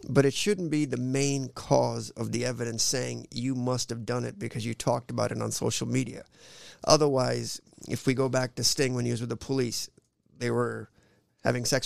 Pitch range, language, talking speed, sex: 115-135 Hz, English, 205 wpm, male